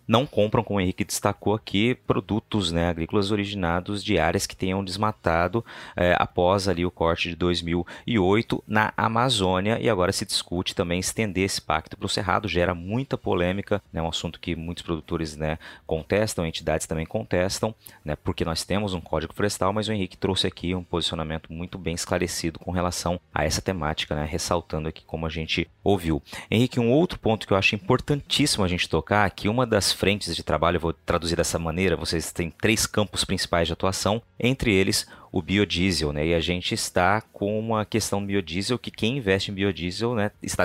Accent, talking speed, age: Brazilian, 190 wpm, 30-49